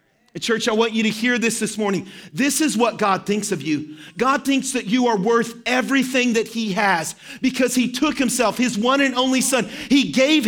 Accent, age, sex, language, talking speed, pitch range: American, 40-59, male, English, 210 wpm, 195-245 Hz